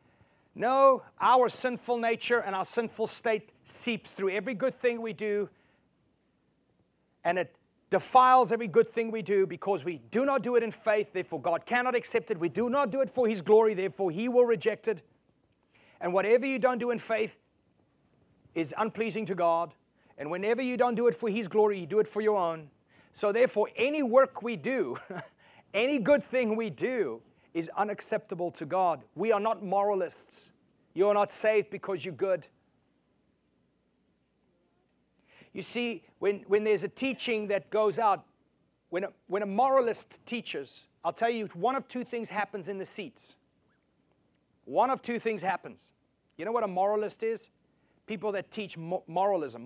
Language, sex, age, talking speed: English, male, 30-49, 170 wpm